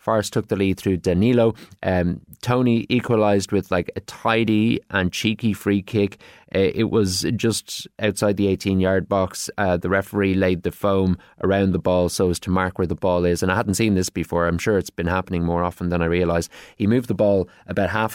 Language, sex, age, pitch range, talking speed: English, male, 20-39, 90-110 Hz, 210 wpm